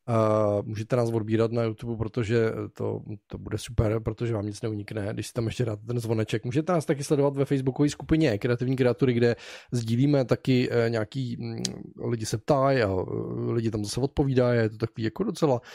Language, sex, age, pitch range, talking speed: Czech, male, 20-39, 115-150 Hz, 185 wpm